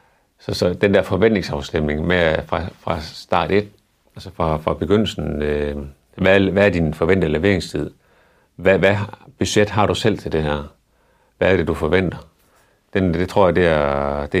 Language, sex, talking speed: Danish, male, 175 wpm